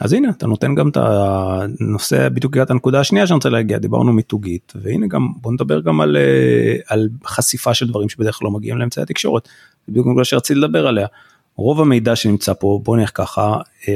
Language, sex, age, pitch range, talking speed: English, male, 30-49, 105-135 Hz, 175 wpm